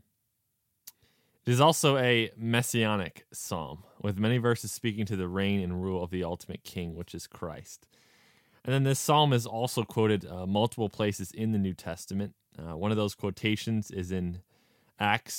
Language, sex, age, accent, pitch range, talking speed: English, male, 20-39, American, 95-115 Hz, 170 wpm